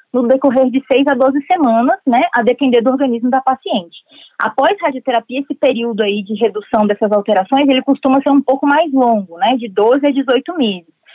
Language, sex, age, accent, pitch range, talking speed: Portuguese, female, 20-39, Brazilian, 230-275 Hz, 200 wpm